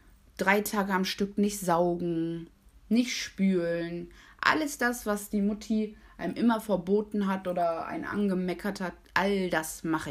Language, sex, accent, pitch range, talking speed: German, female, German, 170-215 Hz, 140 wpm